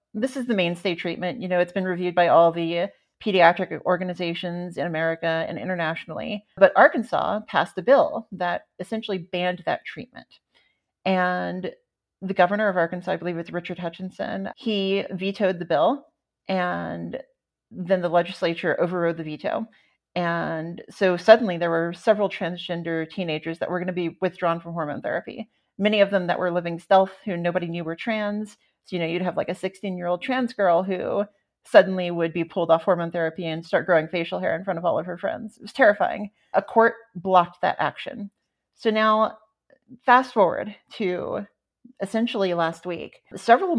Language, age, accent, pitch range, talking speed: English, 40-59, American, 175-210 Hz, 175 wpm